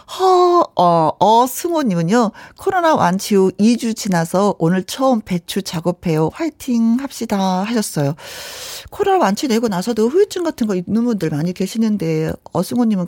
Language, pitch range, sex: Korean, 175-250 Hz, female